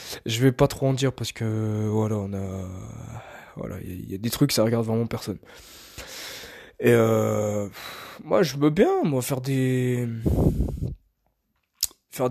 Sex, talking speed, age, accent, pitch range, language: male, 155 wpm, 20-39, French, 115-150 Hz, French